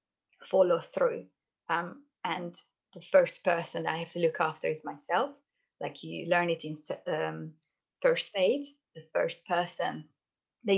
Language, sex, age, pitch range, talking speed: English, female, 20-39, 160-260 Hz, 145 wpm